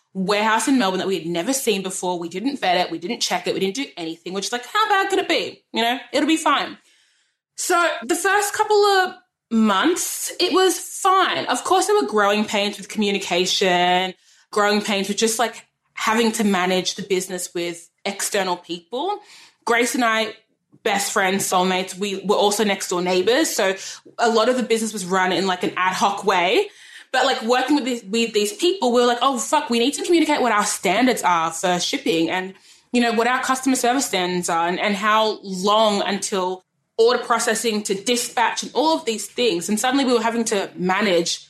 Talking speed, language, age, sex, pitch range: 205 wpm, English, 20-39, female, 185-260 Hz